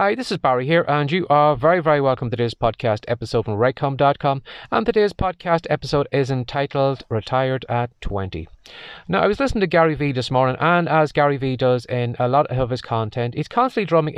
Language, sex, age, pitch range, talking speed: English, male, 30-49, 120-150 Hz, 205 wpm